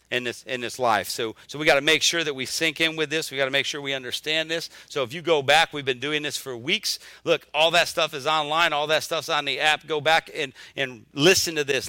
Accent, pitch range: American, 130-155 Hz